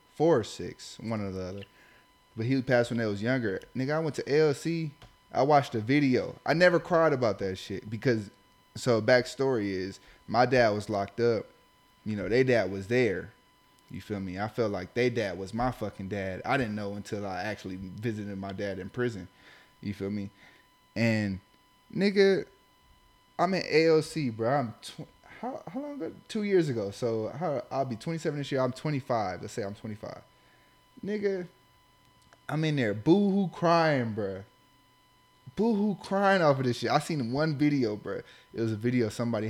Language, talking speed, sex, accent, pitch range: English, 185 wpm, male, American, 105-145 Hz